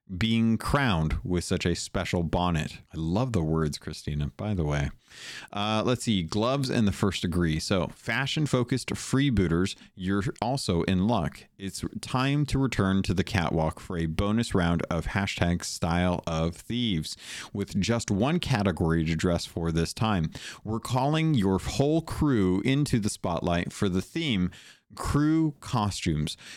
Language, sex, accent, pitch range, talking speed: English, male, American, 85-115 Hz, 155 wpm